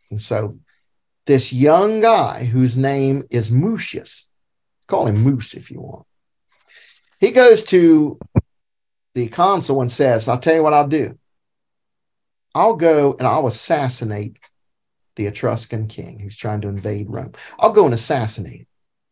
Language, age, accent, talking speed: English, 50-69, American, 140 wpm